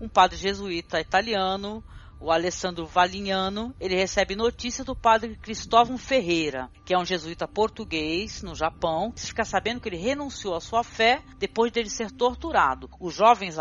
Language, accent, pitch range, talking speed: Portuguese, Brazilian, 175-235 Hz, 160 wpm